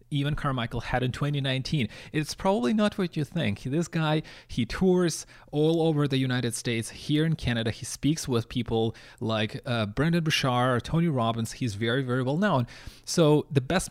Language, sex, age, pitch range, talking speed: English, male, 30-49, 115-145 Hz, 175 wpm